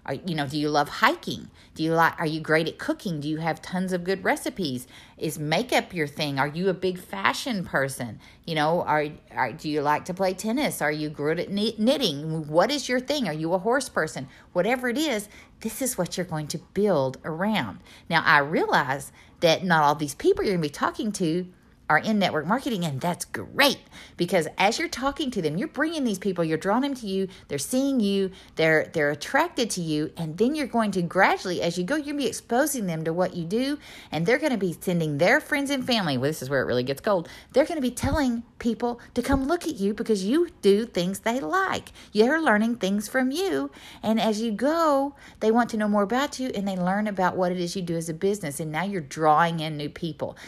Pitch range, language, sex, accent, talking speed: 160-245 Hz, English, female, American, 235 wpm